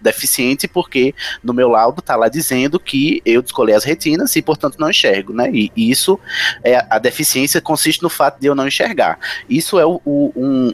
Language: Portuguese